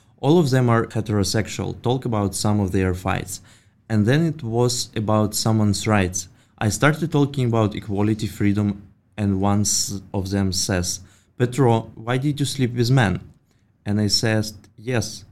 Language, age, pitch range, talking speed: English, 20-39, 100-120 Hz, 155 wpm